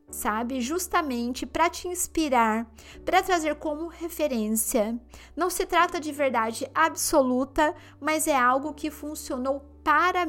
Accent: Brazilian